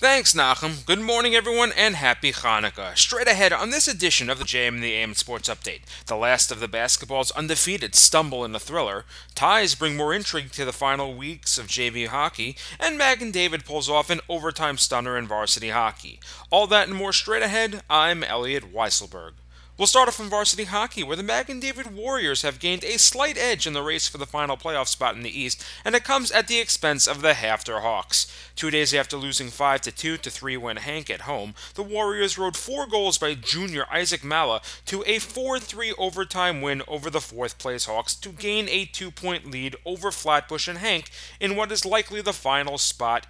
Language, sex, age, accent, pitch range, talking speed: English, male, 30-49, American, 125-190 Hz, 200 wpm